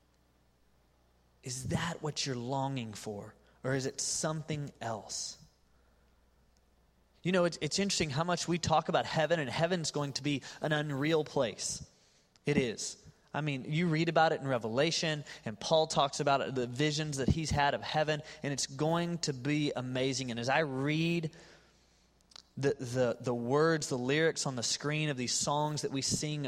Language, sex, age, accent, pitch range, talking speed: English, male, 20-39, American, 120-160 Hz, 170 wpm